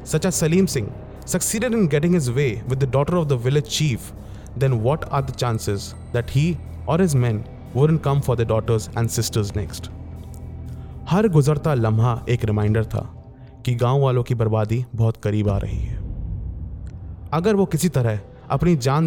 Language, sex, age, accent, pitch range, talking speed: Hindi, male, 30-49, native, 110-150 Hz, 175 wpm